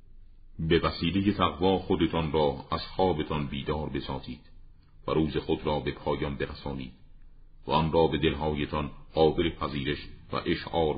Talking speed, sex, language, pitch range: 135 wpm, male, Persian, 75-85 Hz